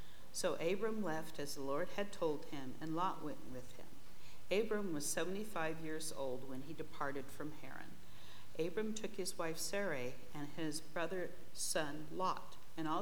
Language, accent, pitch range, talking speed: English, American, 145-180 Hz, 165 wpm